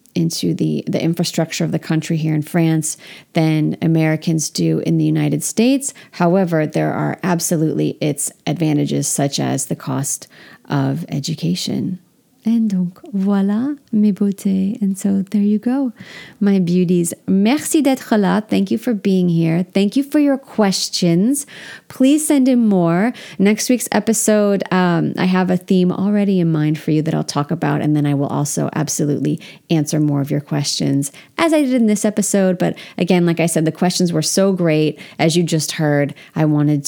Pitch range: 155-205 Hz